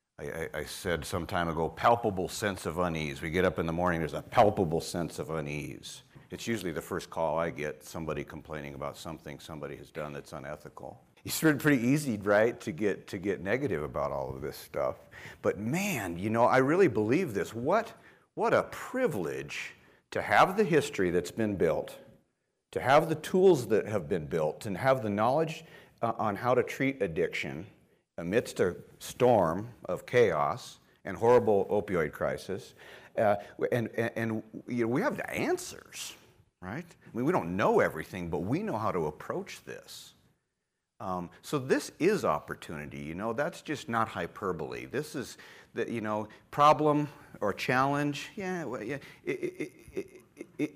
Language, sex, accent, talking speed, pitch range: English, male, American, 175 wpm, 90-150 Hz